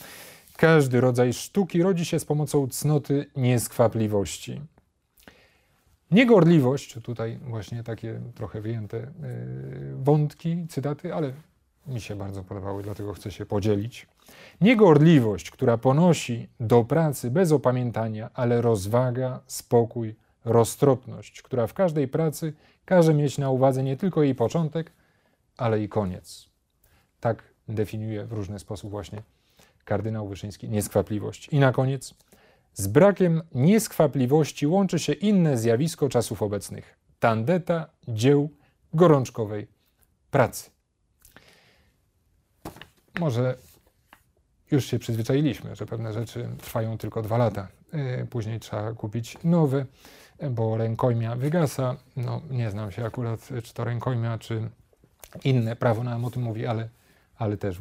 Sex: male